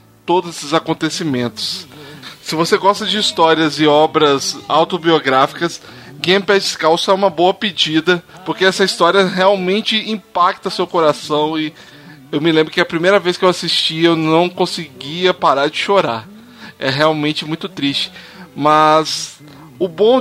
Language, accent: Portuguese, Brazilian